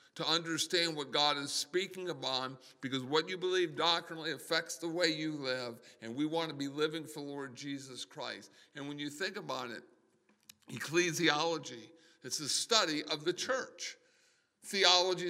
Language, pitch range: English, 145-170 Hz